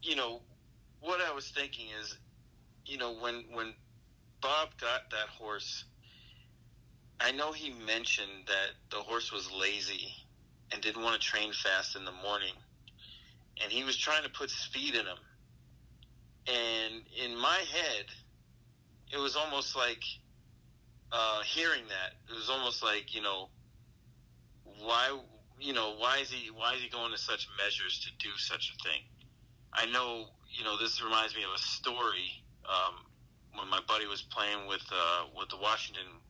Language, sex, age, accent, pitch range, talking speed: English, male, 40-59, American, 110-125 Hz, 160 wpm